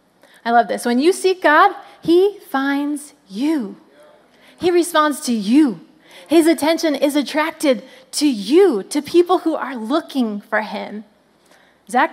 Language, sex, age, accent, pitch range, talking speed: English, female, 30-49, American, 230-310 Hz, 140 wpm